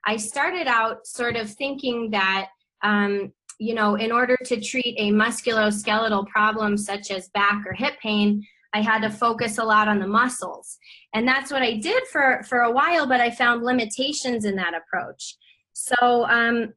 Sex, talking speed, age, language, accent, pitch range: female, 180 wpm, 20-39, English, American, 210-250 Hz